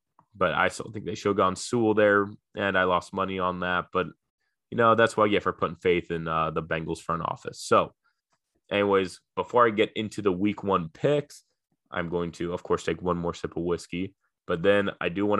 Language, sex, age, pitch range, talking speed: English, male, 20-39, 85-105 Hz, 225 wpm